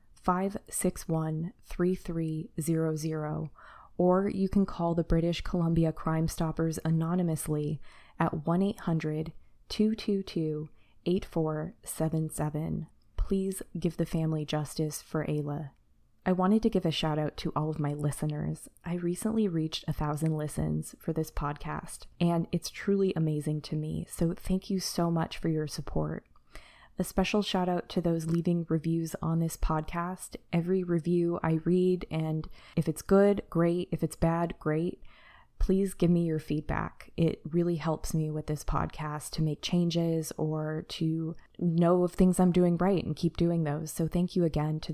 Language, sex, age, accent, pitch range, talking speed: English, female, 20-39, American, 155-175 Hz, 150 wpm